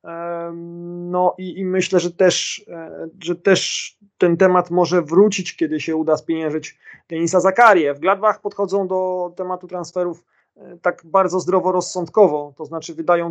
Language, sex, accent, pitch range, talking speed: Polish, male, native, 165-185 Hz, 135 wpm